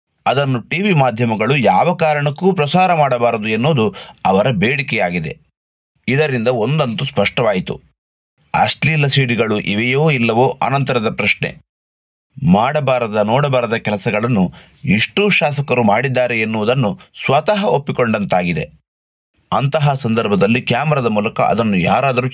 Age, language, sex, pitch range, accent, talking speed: 30-49, Kannada, male, 115-150 Hz, native, 90 wpm